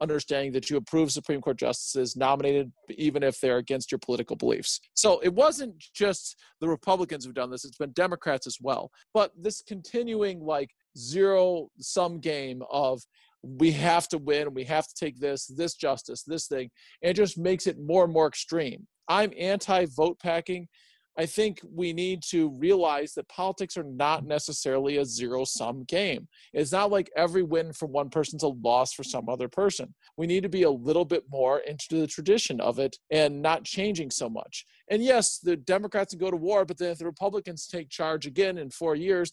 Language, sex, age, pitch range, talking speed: English, male, 40-59, 145-190 Hz, 195 wpm